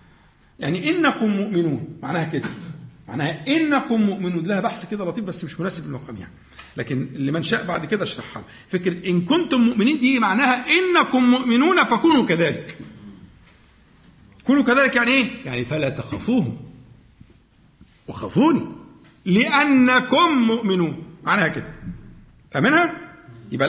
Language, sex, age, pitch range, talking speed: Arabic, male, 50-69, 170-255 Hz, 120 wpm